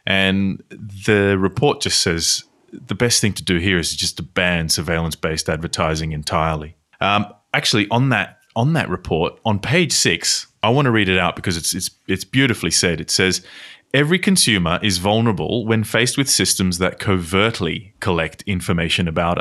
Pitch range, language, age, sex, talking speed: 85-105 Hz, English, 30-49, male, 170 wpm